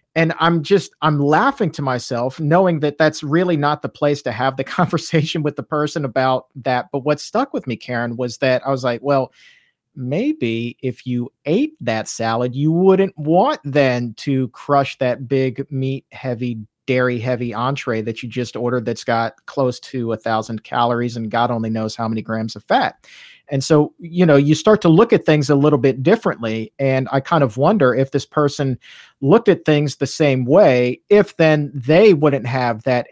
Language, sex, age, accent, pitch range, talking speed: English, male, 40-59, American, 125-155 Hz, 195 wpm